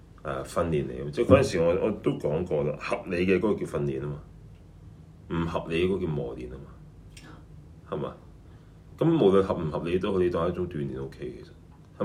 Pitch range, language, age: 75-100 Hz, Chinese, 30-49